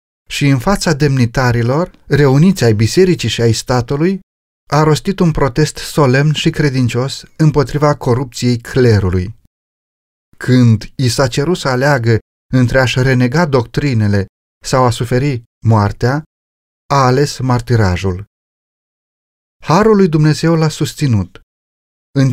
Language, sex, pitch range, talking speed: Romanian, male, 110-150 Hz, 115 wpm